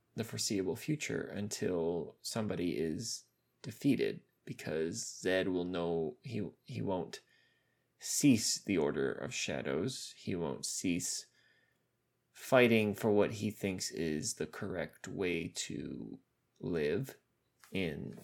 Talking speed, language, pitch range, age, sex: 110 wpm, English, 105-125 Hz, 20-39, male